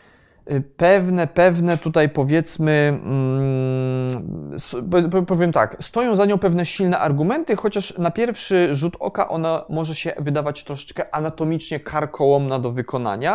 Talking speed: 115 wpm